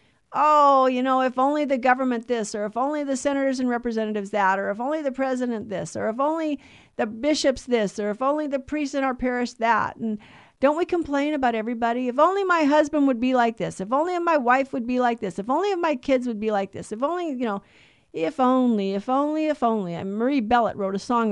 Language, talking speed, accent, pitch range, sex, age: English, 235 wpm, American, 220-275 Hz, female, 50-69